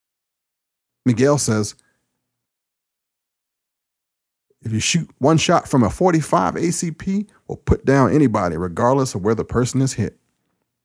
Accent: American